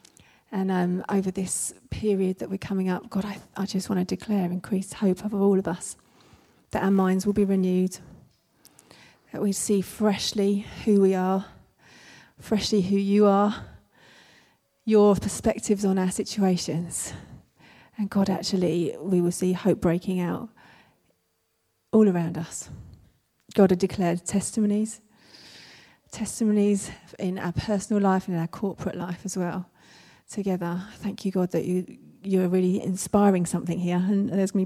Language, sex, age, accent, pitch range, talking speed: English, female, 30-49, British, 180-205 Hz, 150 wpm